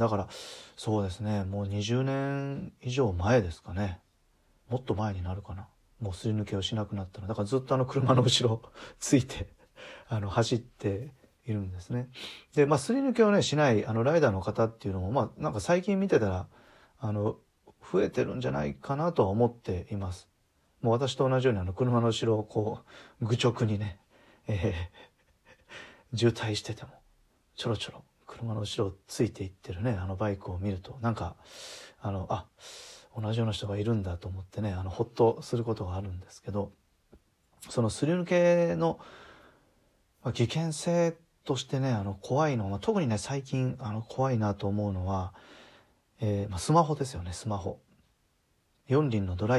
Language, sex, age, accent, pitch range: Japanese, male, 40-59, native, 100-130 Hz